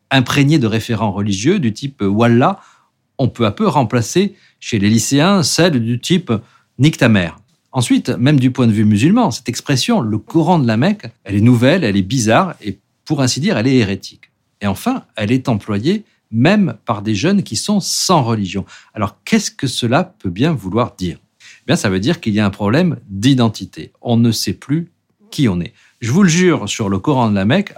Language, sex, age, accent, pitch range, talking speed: French, male, 50-69, French, 105-150 Hz, 220 wpm